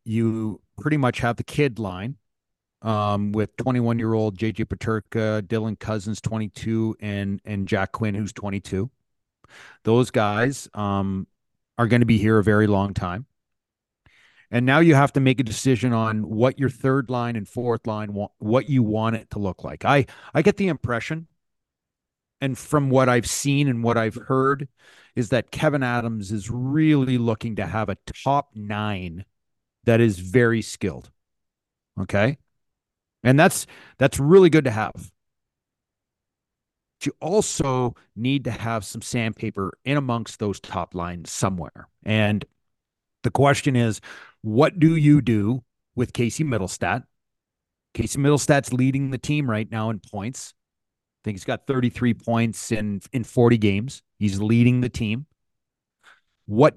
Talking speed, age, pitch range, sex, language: 150 wpm, 40-59, 105-130 Hz, male, English